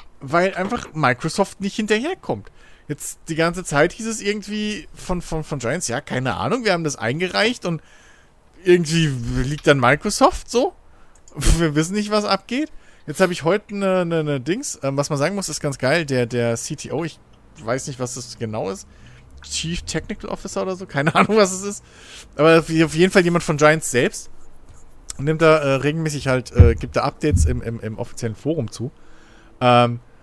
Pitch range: 130-180 Hz